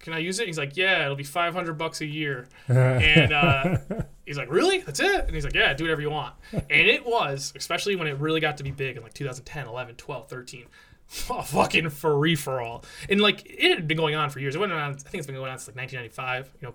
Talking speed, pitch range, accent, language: 260 wpm, 125-150 Hz, American, English